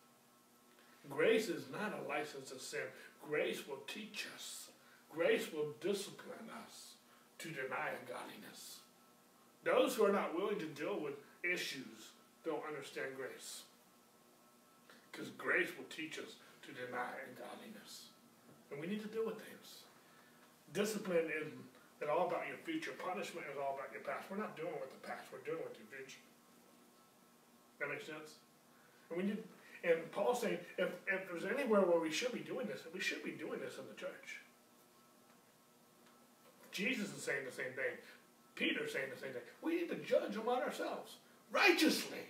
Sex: male